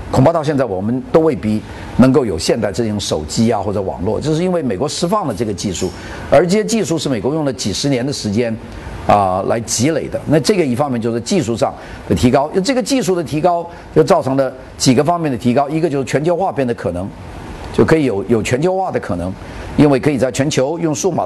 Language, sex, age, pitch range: Chinese, male, 50-69, 115-160 Hz